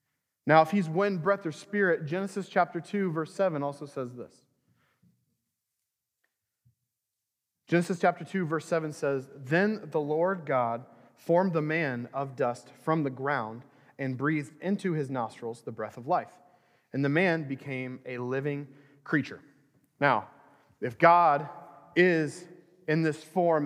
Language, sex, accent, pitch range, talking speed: English, male, American, 130-170 Hz, 140 wpm